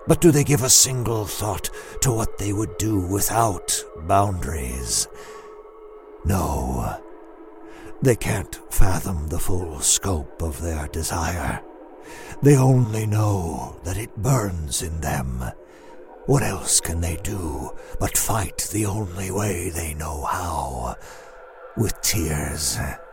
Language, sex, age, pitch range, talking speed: English, male, 60-79, 85-125 Hz, 120 wpm